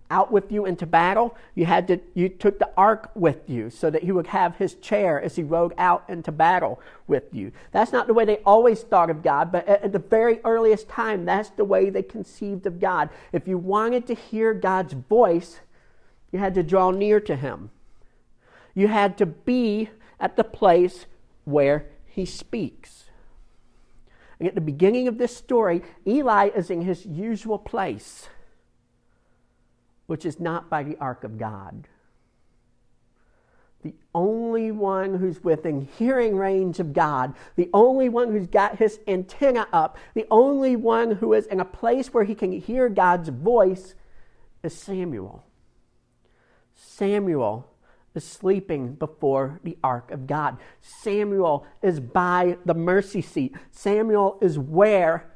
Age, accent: 50-69, American